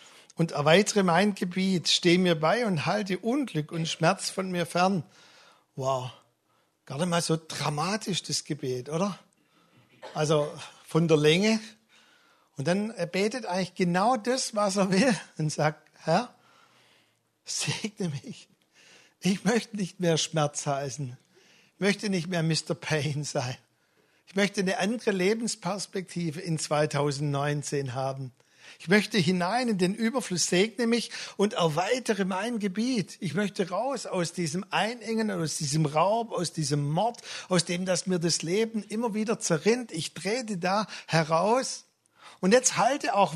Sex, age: male, 60-79